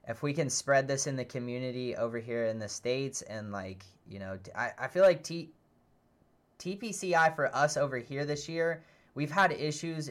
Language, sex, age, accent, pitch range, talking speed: English, male, 10-29, American, 110-140 Hz, 190 wpm